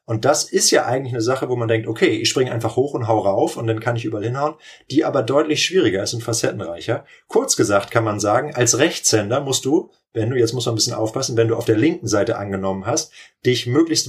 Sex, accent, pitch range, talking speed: male, German, 115-140 Hz, 245 wpm